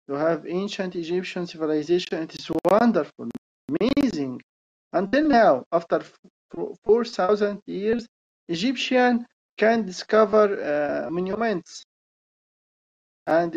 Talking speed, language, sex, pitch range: 90 wpm, English, male, 160-205 Hz